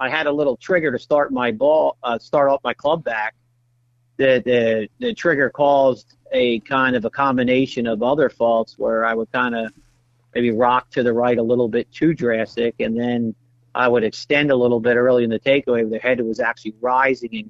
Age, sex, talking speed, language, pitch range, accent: 50-69, male, 210 wpm, English, 120-135 Hz, American